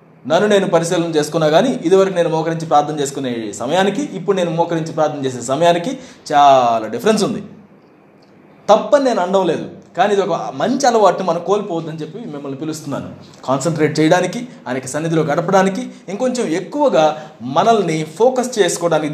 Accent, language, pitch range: native, Telugu, 145-200 Hz